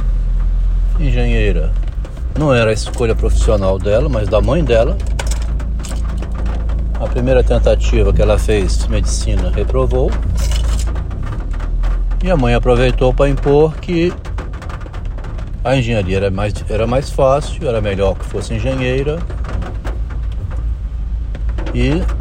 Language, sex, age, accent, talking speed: Portuguese, male, 60-79, Brazilian, 105 wpm